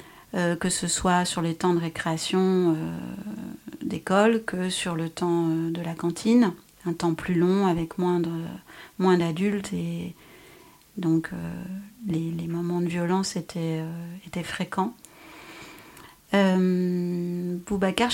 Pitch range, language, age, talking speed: 165-190 Hz, French, 40-59, 130 wpm